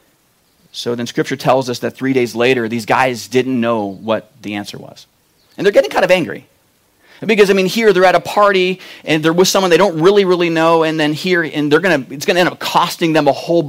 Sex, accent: male, American